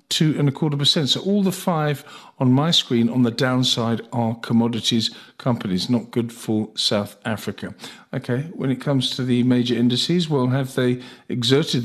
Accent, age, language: British, 50-69, English